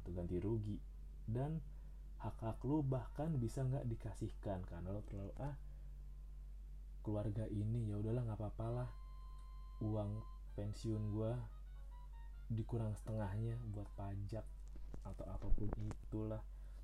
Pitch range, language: 90-115 Hz, Indonesian